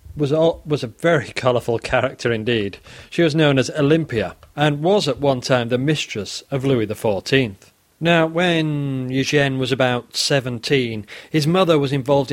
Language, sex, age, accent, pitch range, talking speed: English, male, 40-59, British, 120-165 Hz, 155 wpm